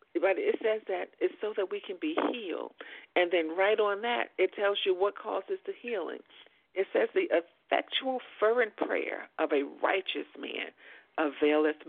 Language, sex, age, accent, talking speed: English, female, 50-69, American, 170 wpm